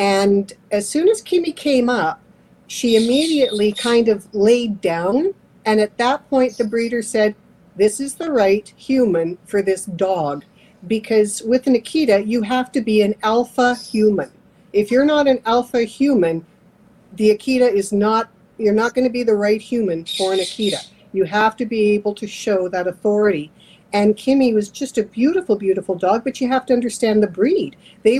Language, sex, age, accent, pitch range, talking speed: English, female, 50-69, American, 195-245 Hz, 180 wpm